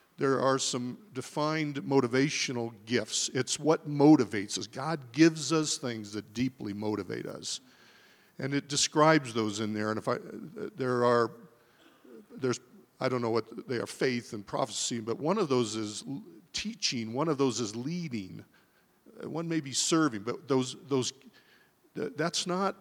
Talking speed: 155 wpm